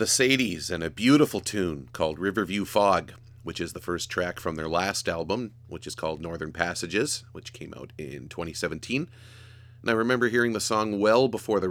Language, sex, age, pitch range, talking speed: English, male, 30-49, 85-115 Hz, 190 wpm